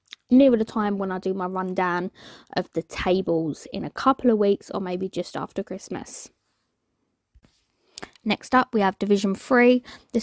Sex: female